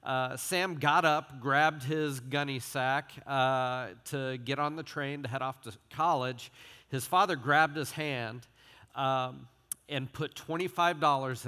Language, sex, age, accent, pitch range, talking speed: English, male, 40-59, American, 125-150 Hz, 145 wpm